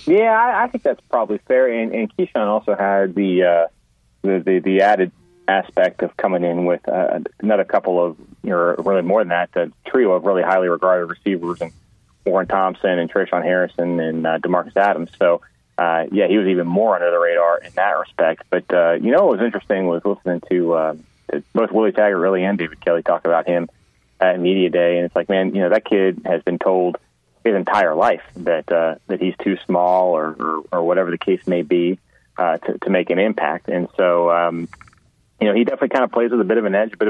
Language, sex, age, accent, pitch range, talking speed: English, male, 30-49, American, 85-100 Hz, 225 wpm